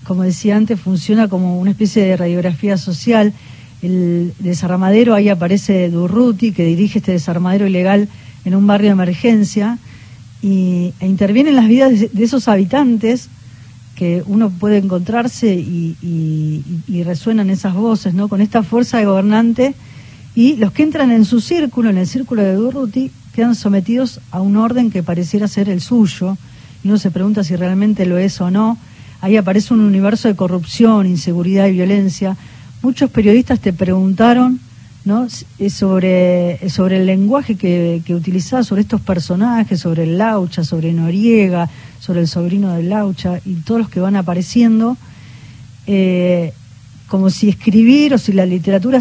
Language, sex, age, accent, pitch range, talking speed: Spanish, female, 40-59, Argentinian, 180-220 Hz, 155 wpm